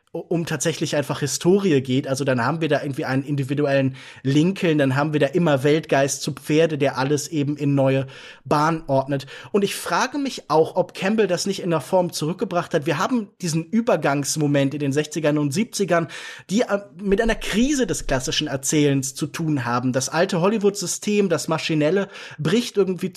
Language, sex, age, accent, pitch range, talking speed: German, male, 20-39, German, 150-195 Hz, 180 wpm